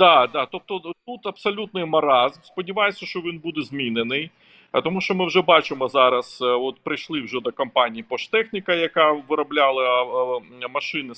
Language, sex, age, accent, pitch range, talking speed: Ukrainian, male, 40-59, native, 130-180 Hz, 140 wpm